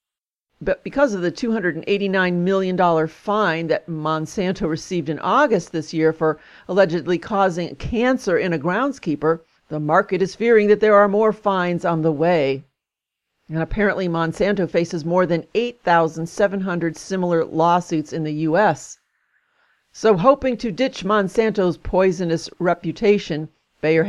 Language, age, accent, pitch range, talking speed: English, 50-69, American, 165-215 Hz, 130 wpm